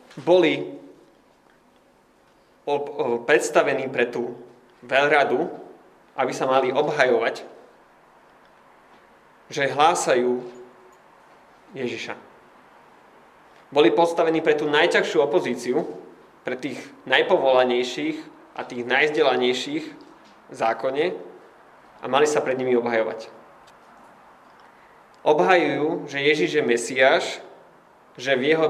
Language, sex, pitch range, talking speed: Slovak, male, 115-155 Hz, 85 wpm